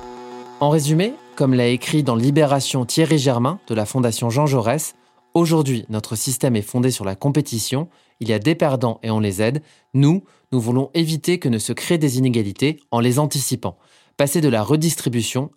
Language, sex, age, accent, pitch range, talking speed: French, male, 20-39, French, 120-160 Hz, 185 wpm